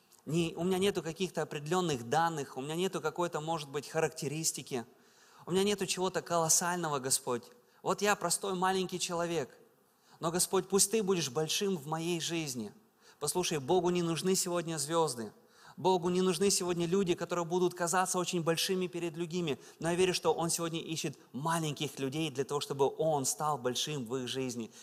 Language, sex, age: Russian, male, 20-39